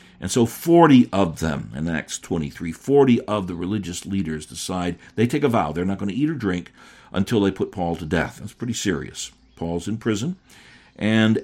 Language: English